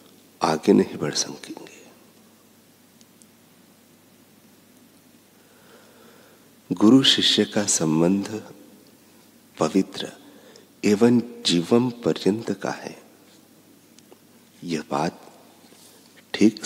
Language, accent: Hindi, native